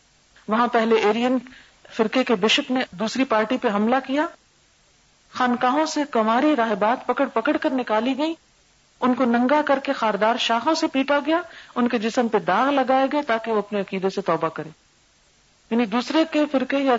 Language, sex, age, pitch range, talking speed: Urdu, female, 40-59, 175-245 Hz, 175 wpm